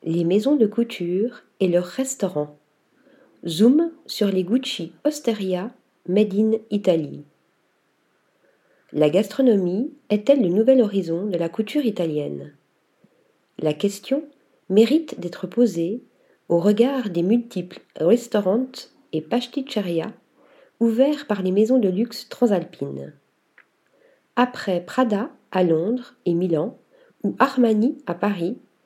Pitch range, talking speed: 185-250 Hz, 110 wpm